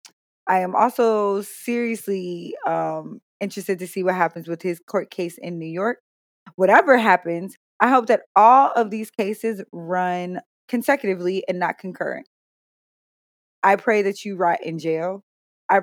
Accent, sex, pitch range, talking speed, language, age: American, female, 185-230 Hz, 150 wpm, English, 20-39